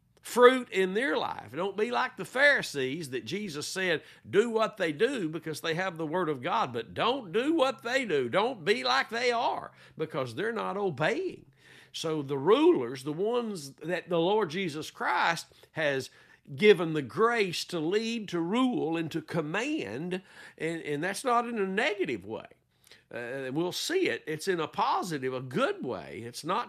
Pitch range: 150-210 Hz